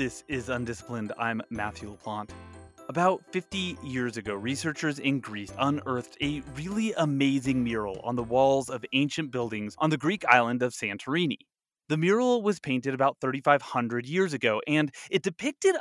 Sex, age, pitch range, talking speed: male, 30-49, 135-220 Hz, 155 wpm